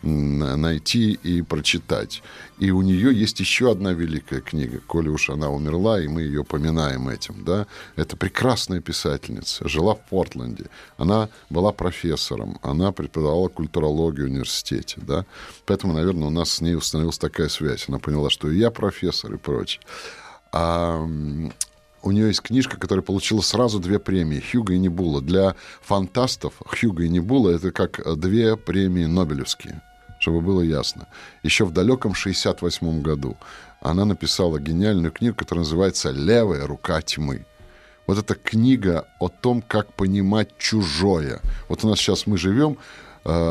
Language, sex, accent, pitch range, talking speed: Russian, male, native, 80-105 Hz, 145 wpm